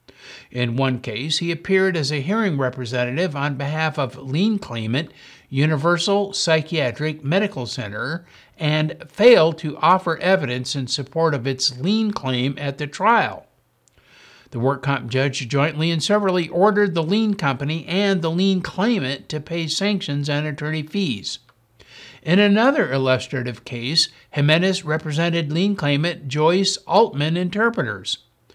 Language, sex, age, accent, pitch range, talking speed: English, male, 60-79, American, 135-180 Hz, 135 wpm